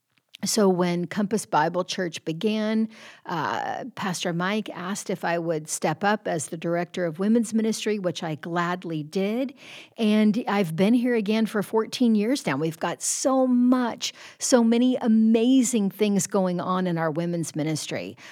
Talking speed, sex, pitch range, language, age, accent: 155 wpm, female, 175-215 Hz, English, 50-69, American